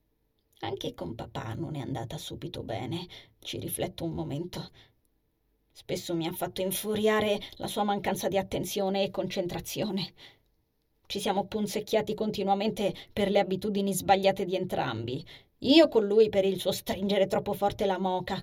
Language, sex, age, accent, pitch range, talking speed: Italian, female, 20-39, native, 185-215 Hz, 145 wpm